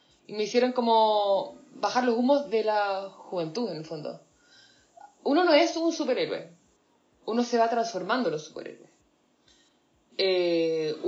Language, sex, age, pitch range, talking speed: Spanish, female, 20-39, 190-250 Hz, 135 wpm